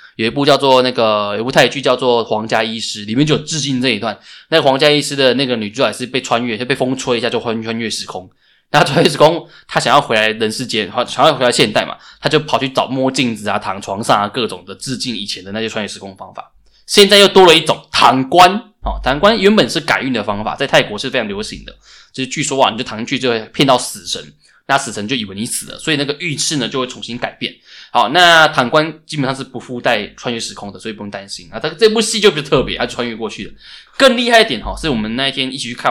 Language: Chinese